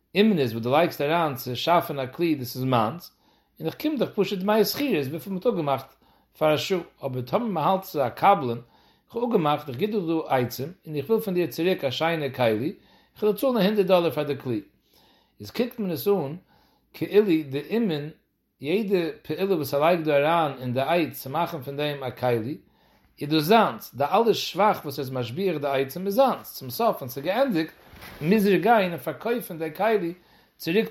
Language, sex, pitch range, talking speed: English, male, 140-200 Hz, 115 wpm